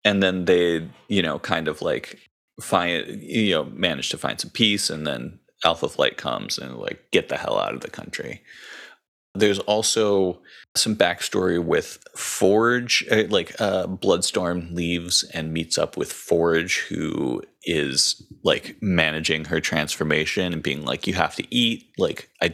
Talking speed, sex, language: 160 wpm, male, English